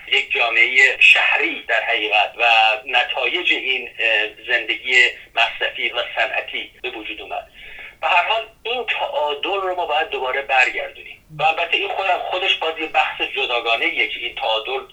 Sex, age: male, 50-69